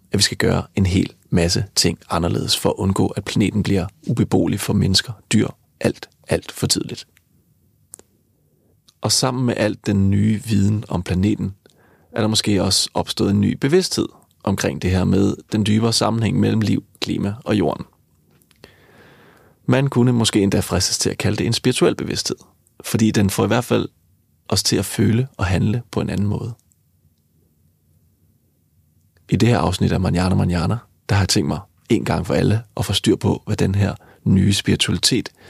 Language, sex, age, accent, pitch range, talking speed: Danish, male, 30-49, native, 95-115 Hz, 175 wpm